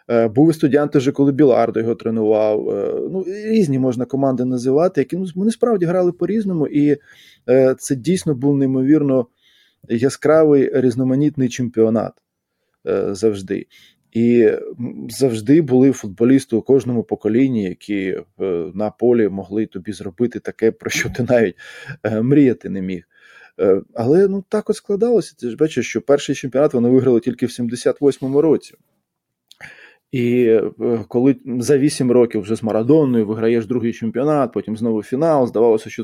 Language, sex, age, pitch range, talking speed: Ukrainian, male, 20-39, 115-155 Hz, 135 wpm